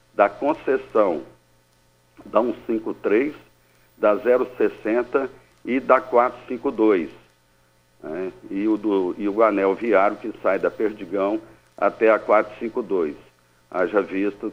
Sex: male